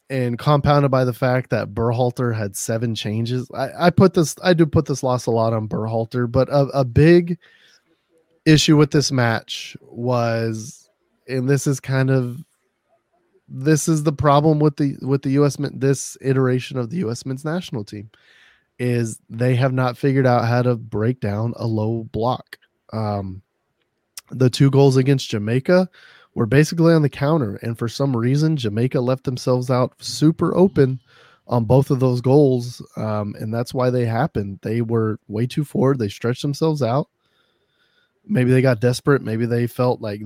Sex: male